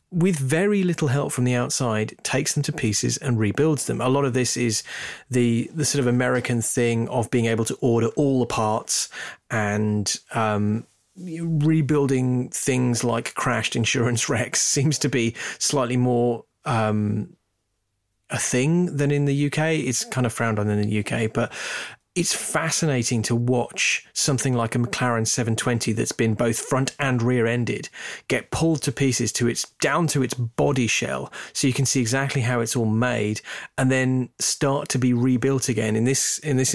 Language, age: English, 30-49